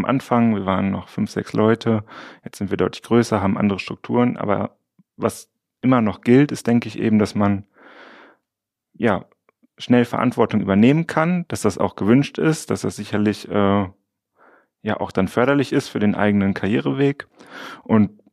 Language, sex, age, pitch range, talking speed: German, male, 30-49, 100-115 Hz, 165 wpm